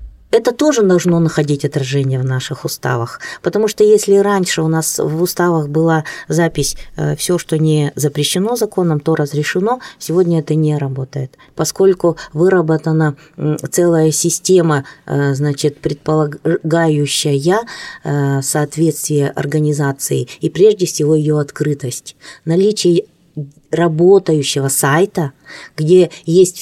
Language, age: Russian, 20-39